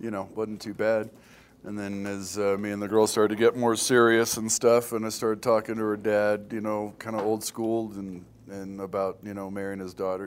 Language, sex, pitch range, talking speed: English, male, 90-110 Hz, 240 wpm